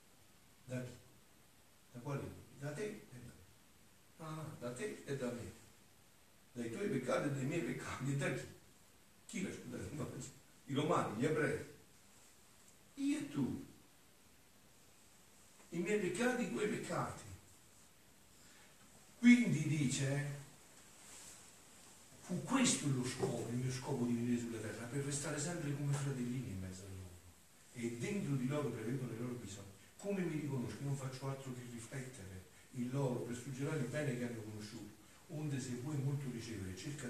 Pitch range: 105-140 Hz